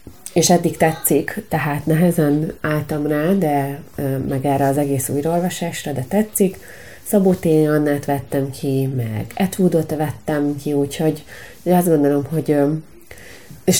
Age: 30-49